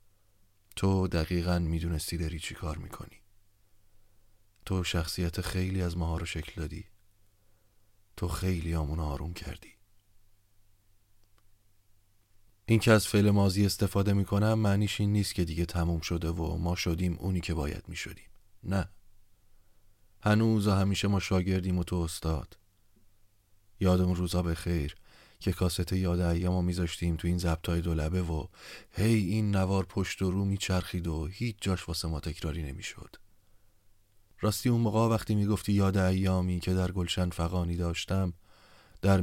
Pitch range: 90-100 Hz